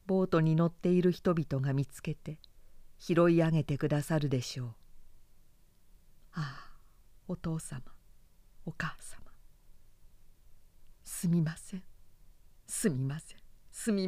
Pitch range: 140-180 Hz